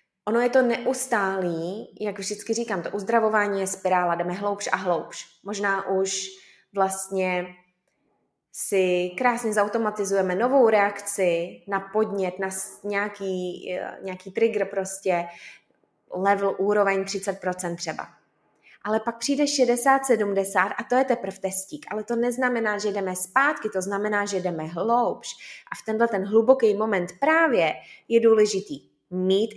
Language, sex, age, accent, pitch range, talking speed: Czech, female, 20-39, native, 190-255 Hz, 130 wpm